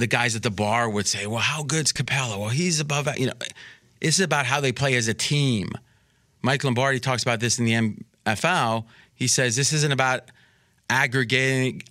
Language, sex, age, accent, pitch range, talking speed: English, male, 30-49, American, 110-145 Hz, 195 wpm